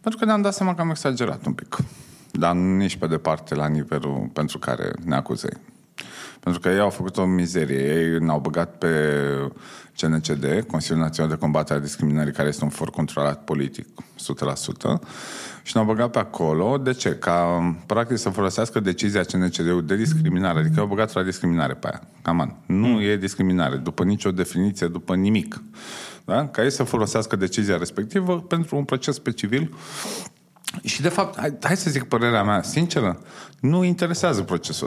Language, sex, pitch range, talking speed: Romanian, male, 80-130 Hz, 175 wpm